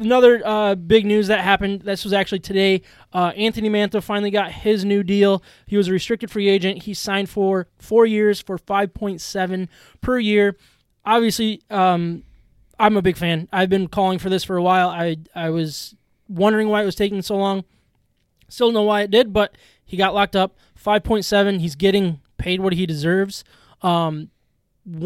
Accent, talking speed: American, 190 wpm